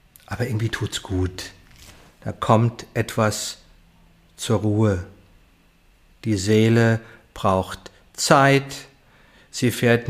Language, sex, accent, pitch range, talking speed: German, male, German, 110-140 Hz, 90 wpm